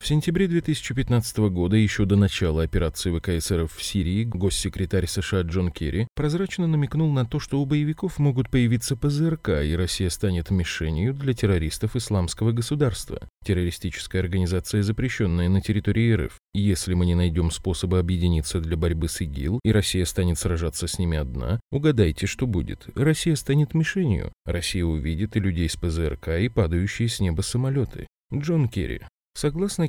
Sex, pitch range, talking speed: male, 90-125 Hz, 155 wpm